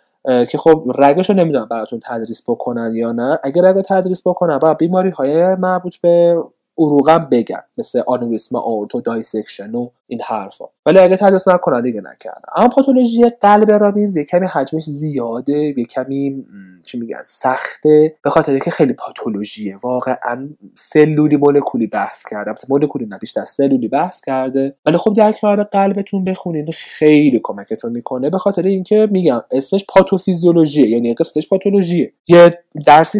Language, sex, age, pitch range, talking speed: Persian, male, 30-49, 125-185 Hz, 150 wpm